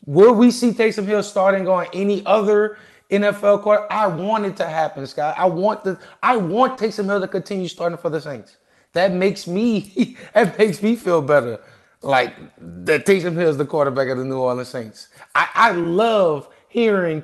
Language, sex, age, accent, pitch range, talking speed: English, male, 30-49, American, 130-195 Hz, 190 wpm